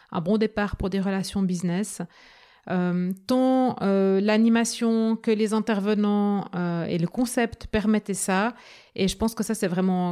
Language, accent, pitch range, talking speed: French, French, 185-220 Hz, 160 wpm